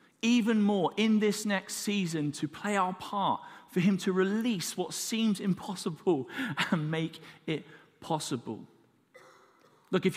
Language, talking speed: English, 135 wpm